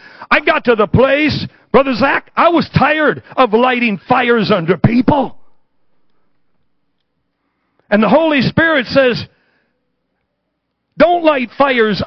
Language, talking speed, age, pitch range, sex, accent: English, 115 wpm, 60-79, 230-280 Hz, male, American